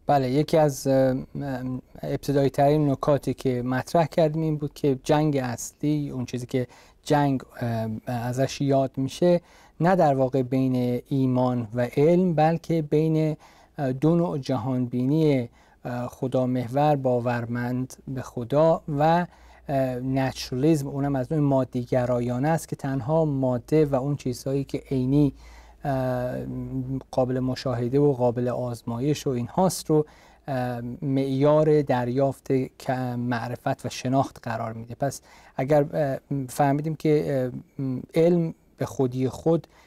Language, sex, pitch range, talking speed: Persian, male, 125-150 Hz, 120 wpm